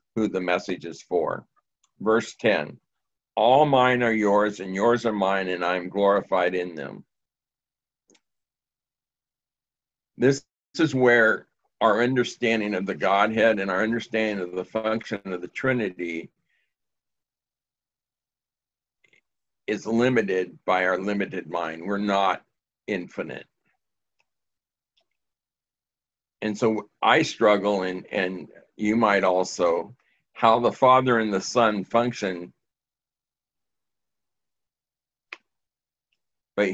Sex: male